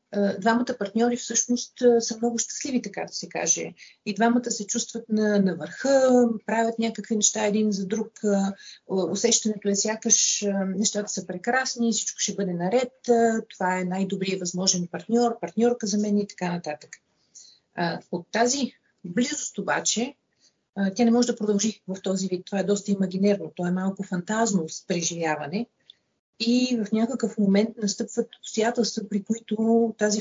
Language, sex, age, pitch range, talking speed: Bulgarian, female, 40-59, 190-230 Hz, 150 wpm